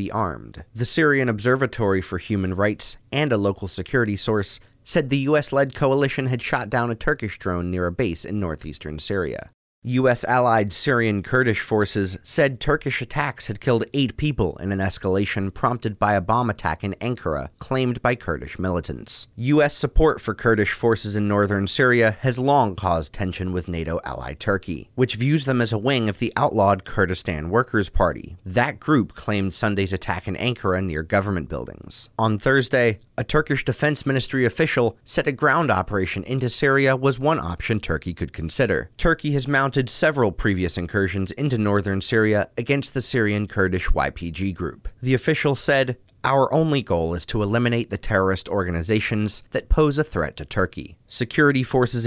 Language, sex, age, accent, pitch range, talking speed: English, male, 30-49, American, 95-135 Hz, 170 wpm